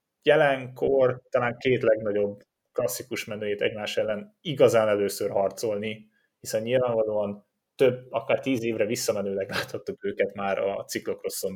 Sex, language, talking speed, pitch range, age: male, Hungarian, 120 wpm, 110-140 Hz, 30-49